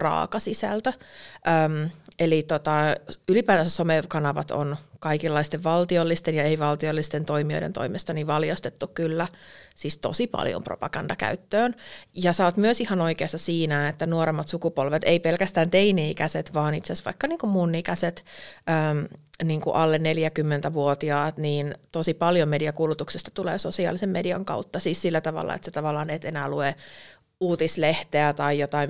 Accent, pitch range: native, 145-175 Hz